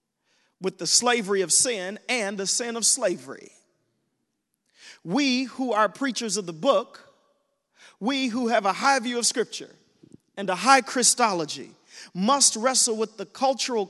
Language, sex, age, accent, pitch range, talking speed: English, male, 40-59, American, 195-235 Hz, 145 wpm